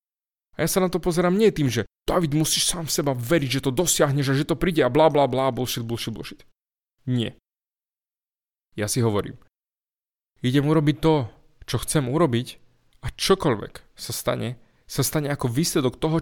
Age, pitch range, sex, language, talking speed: 20-39, 125-170 Hz, male, Slovak, 170 wpm